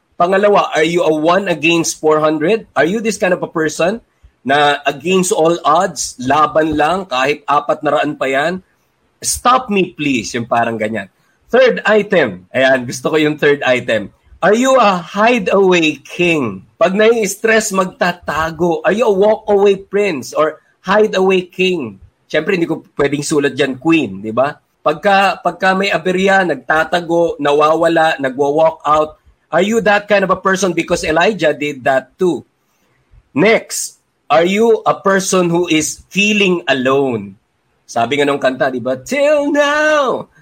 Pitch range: 150-205 Hz